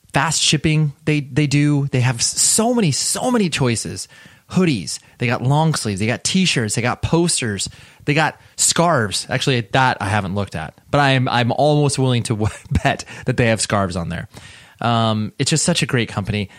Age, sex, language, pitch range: 20-39, male, English, 105-140 Hz